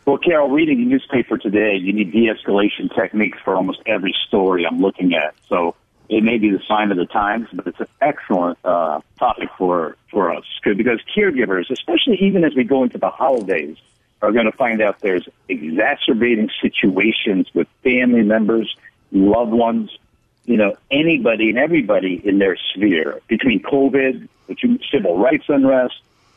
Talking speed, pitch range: 165 wpm, 110-165 Hz